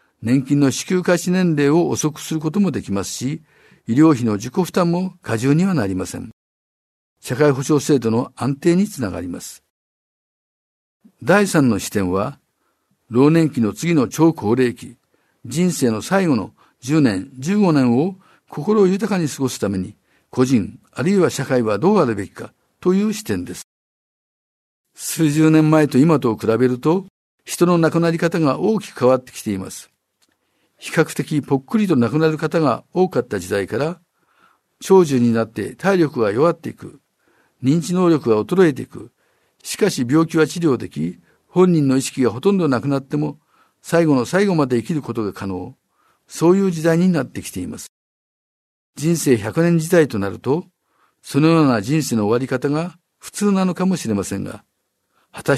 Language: Japanese